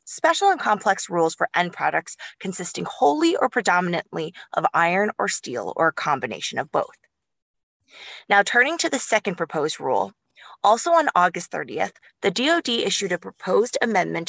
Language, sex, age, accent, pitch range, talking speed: English, female, 20-39, American, 170-220 Hz, 155 wpm